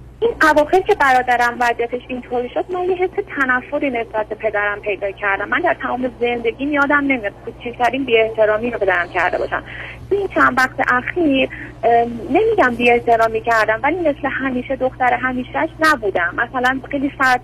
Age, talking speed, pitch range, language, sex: 30-49, 155 wpm, 210-255 Hz, Persian, female